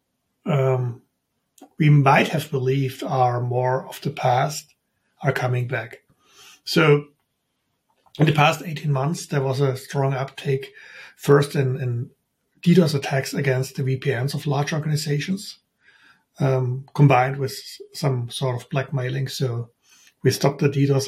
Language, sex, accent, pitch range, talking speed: English, male, German, 130-150 Hz, 135 wpm